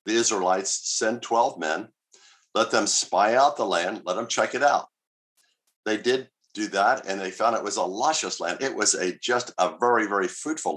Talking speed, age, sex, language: 200 wpm, 50-69, male, English